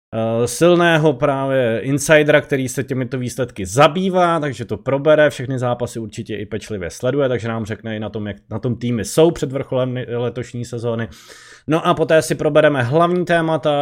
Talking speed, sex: 170 wpm, male